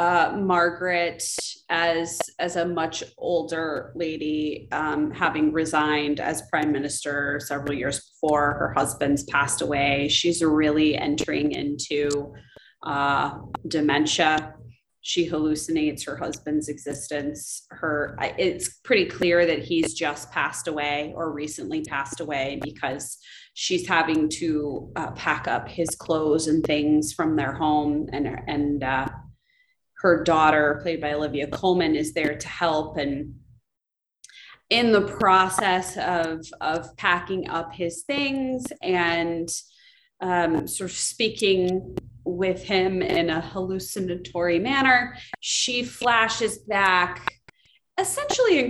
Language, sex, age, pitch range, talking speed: English, female, 20-39, 150-185 Hz, 120 wpm